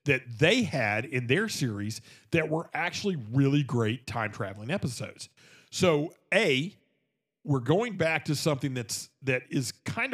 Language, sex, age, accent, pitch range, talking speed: English, male, 50-69, American, 125-165 Hz, 150 wpm